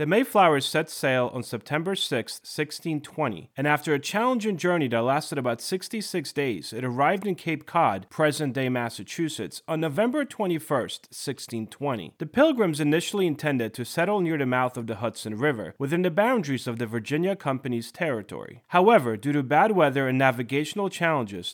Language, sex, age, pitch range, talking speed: English, male, 30-49, 120-175 Hz, 160 wpm